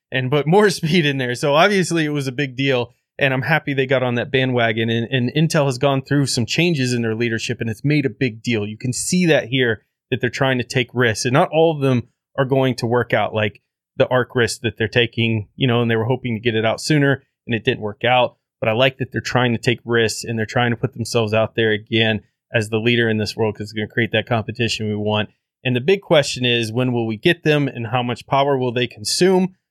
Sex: male